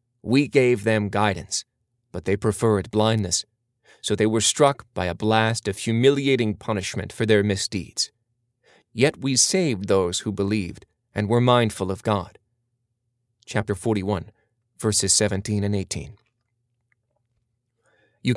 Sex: male